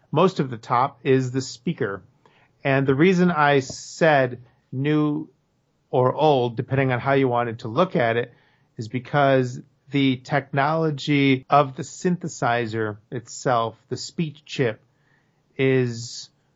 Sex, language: male, English